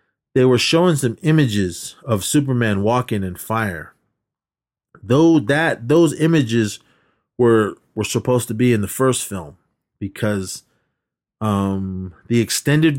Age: 30-49